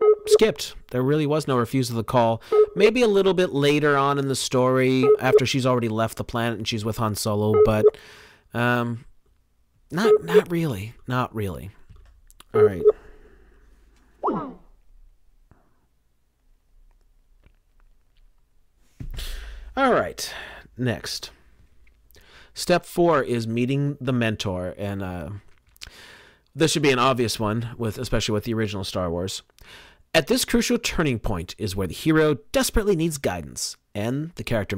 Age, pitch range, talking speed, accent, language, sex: 40-59, 95-145 Hz, 130 wpm, American, English, male